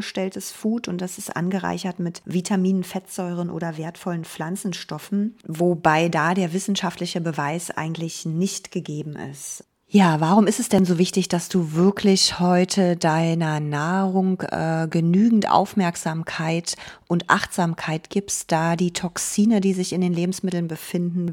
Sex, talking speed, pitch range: female, 135 wpm, 170-190 Hz